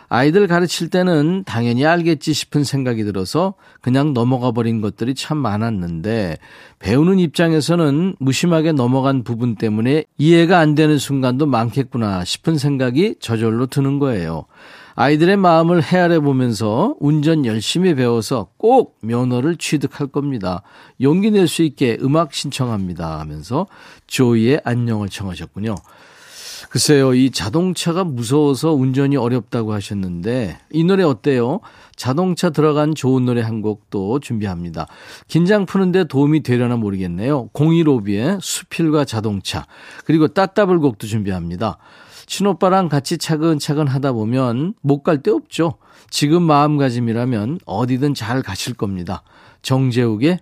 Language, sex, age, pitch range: Korean, male, 40-59, 115-160 Hz